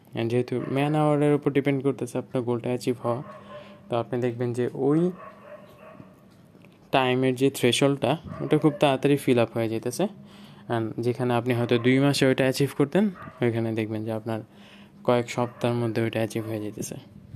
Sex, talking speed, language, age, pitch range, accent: male, 135 wpm, Bengali, 20-39, 120-145 Hz, native